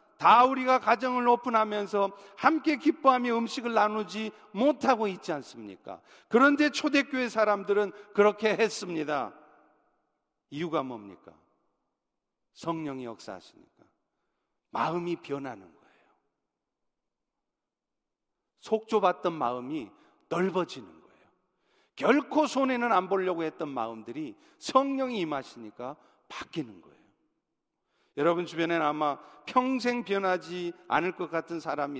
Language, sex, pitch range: Korean, male, 170-230 Hz